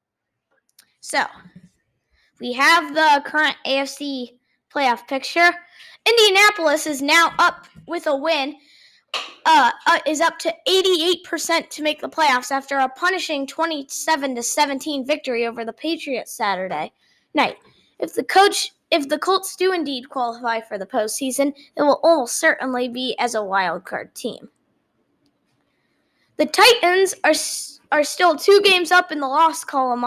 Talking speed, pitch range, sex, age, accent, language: 135 wpm, 260-335 Hz, female, 20-39, American, English